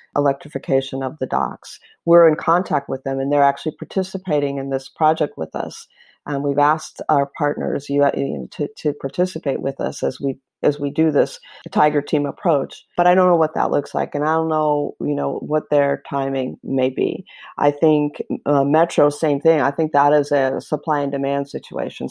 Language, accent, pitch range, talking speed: English, American, 140-160 Hz, 195 wpm